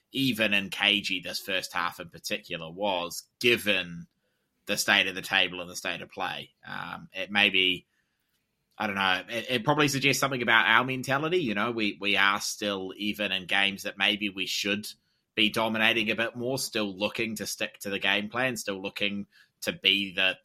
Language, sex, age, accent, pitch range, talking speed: English, male, 20-39, Australian, 100-115 Hz, 195 wpm